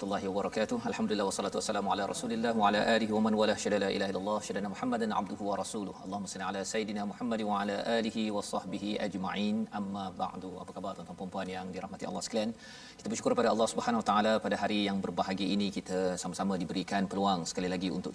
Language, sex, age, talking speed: Malayalam, male, 40-59, 195 wpm